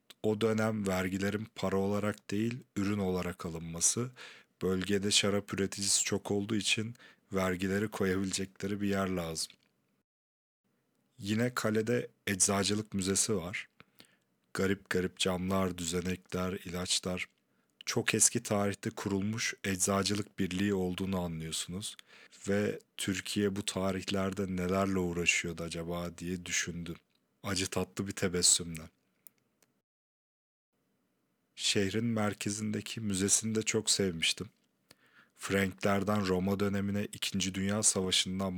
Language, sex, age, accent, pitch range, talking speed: Turkish, male, 40-59, native, 90-100 Hz, 100 wpm